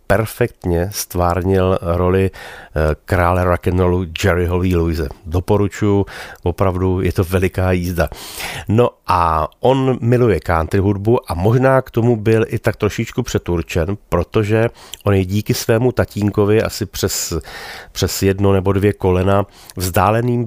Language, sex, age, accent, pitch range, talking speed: Czech, male, 30-49, native, 85-105 Hz, 125 wpm